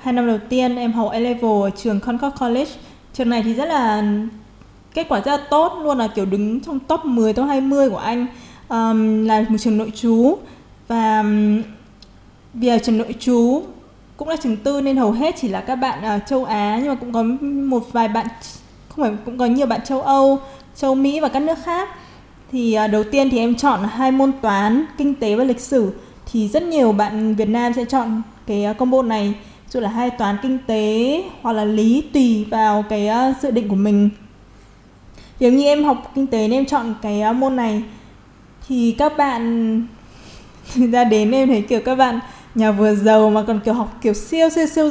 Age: 20-39